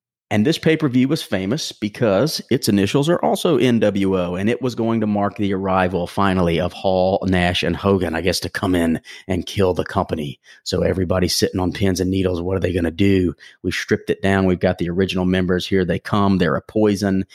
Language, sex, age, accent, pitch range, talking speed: English, male, 30-49, American, 95-115 Hz, 215 wpm